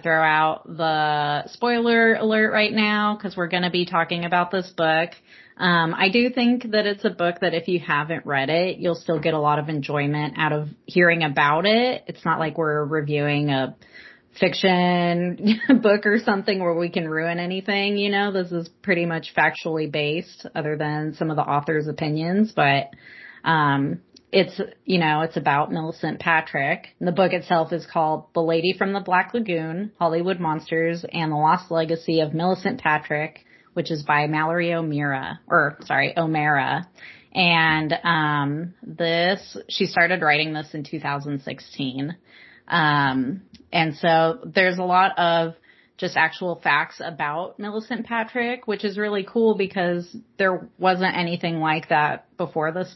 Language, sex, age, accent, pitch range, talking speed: English, female, 30-49, American, 155-185 Hz, 165 wpm